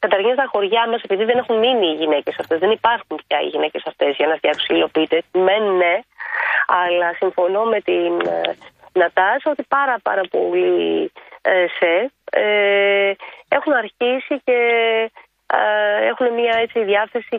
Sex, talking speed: female, 135 wpm